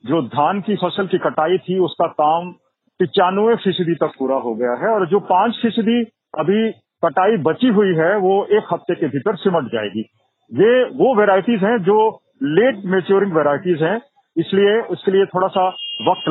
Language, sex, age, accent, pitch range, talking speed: Hindi, male, 40-59, native, 160-220 Hz, 175 wpm